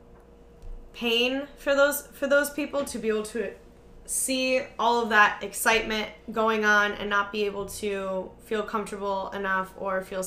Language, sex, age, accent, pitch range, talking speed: English, female, 10-29, American, 190-220 Hz, 160 wpm